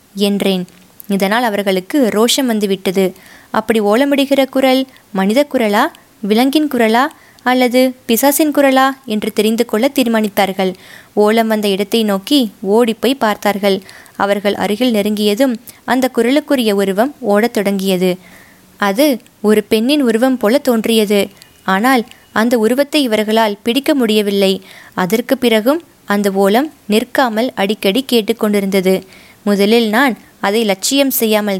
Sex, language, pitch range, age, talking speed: female, Tamil, 200-250 Hz, 20-39, 105 wpm